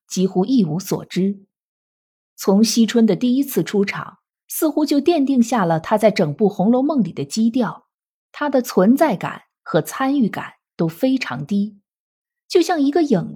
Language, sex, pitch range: Chinese, female, 195-255 Hz